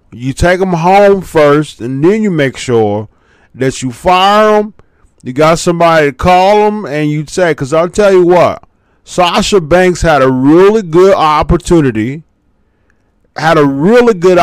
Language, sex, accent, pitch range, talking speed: English, male, American, 135-215 Hz, 160 wpm